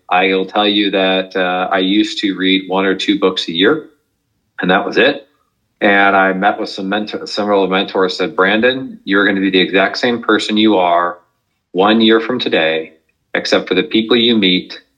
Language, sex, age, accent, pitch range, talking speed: English, male, 40-59, American, 90-105 Hz, 200 wpm